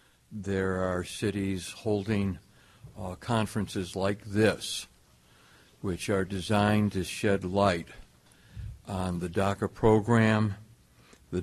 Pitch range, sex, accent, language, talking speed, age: 85-105 Hz, male, American, English, 100 wpm, 60-79